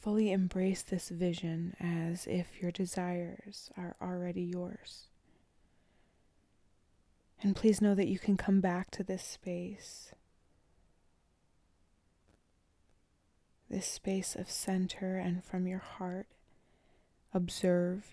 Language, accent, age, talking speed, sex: English, American, 20-39, 105 wpm, female